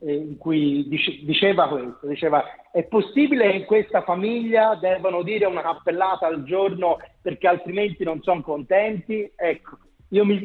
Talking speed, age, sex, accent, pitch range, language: 145 wpm, 40-59, male, native, 160-205 Hz, Italian